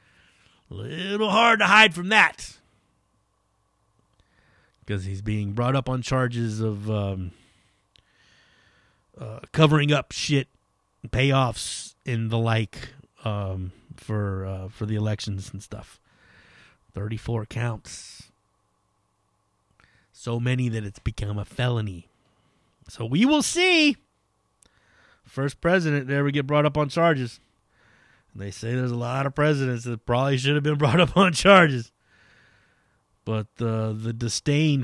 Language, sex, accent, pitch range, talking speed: English, male, American, 105-145 Hz, 125 wpm